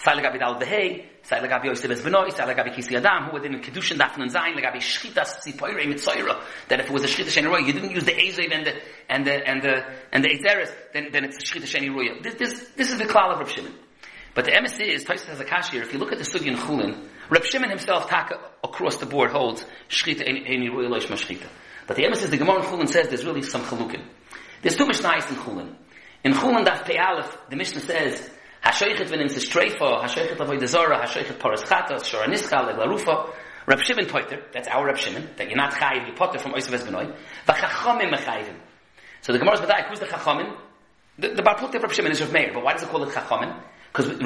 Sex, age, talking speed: male, 30-49, 150 wpm